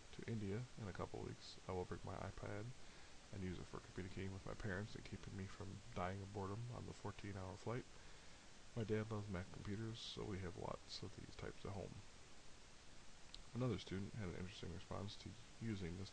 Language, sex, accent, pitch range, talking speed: English, male, American, 90-105 Hz, 195 wpm